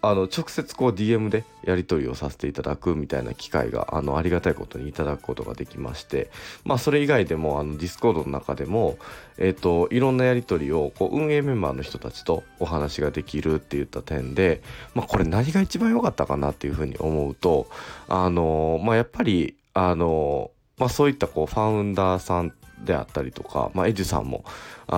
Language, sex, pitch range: Japanese, male, 75-105 Hz